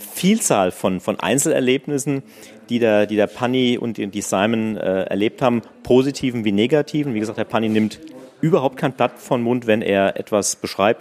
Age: 40-59